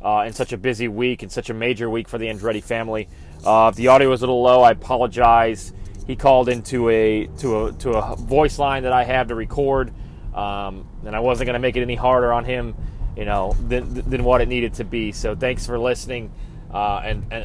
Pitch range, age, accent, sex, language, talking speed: 105-120 Hz, 30-49, American, male, English, 230 wpm